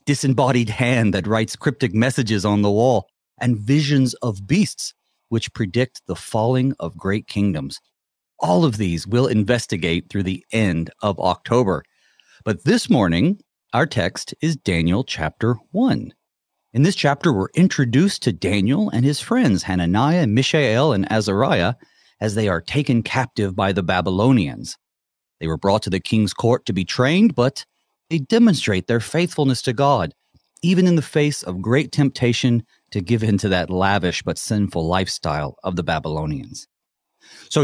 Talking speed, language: 155 wpm, English